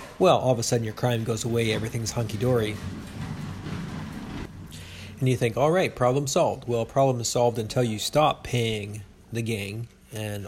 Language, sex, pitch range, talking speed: English, male, 105-125 Hz, 165 wpm